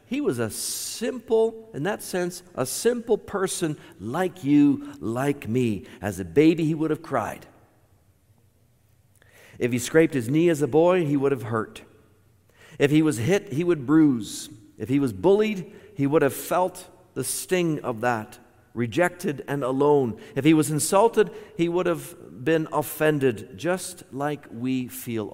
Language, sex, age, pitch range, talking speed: English, male, 50-69, 115-170 Hz, 160 wpm